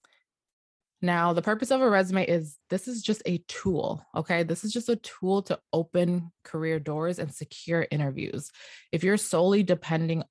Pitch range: 150-175 Hz